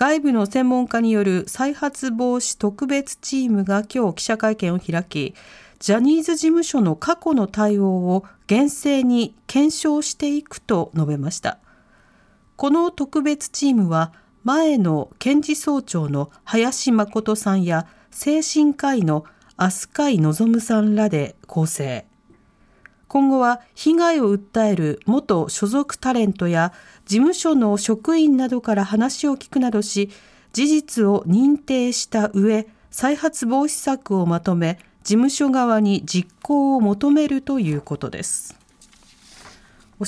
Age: 40-59